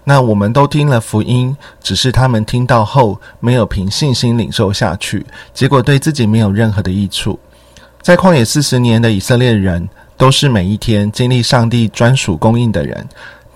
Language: Chinese